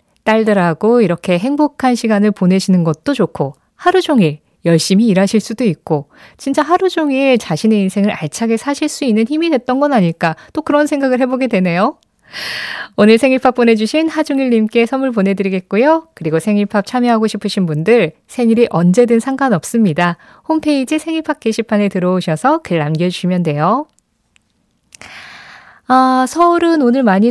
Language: Korean